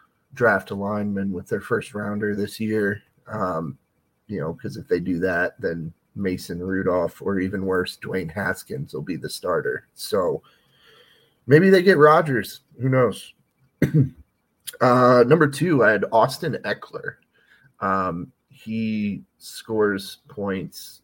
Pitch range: 100-130 Hz